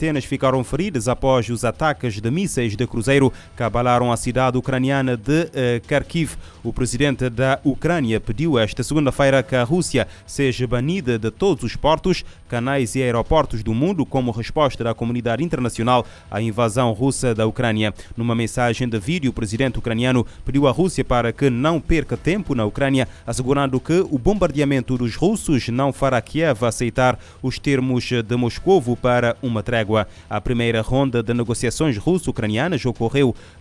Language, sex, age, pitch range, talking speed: Portuguese, male, 20-39, 115-140 Hz, 160 wpm